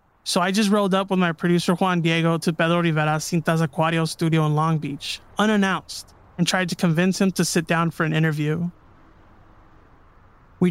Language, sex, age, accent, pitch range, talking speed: English, male, 20-39, American, 155-185 Hz, 180 wpm